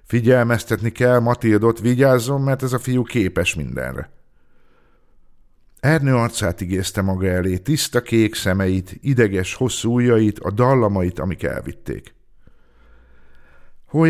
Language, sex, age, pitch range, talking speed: Hungarian, male, 50-69, 90-120 Hz, 110 wpm